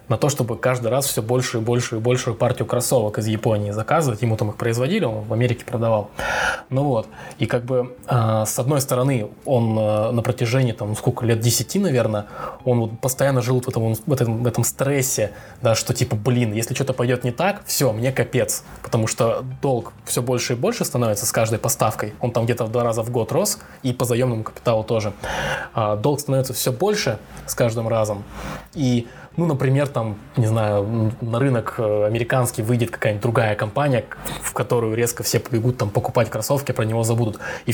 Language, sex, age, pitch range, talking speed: Russian, male, 20-39, 110-130 Hz, 195 wpm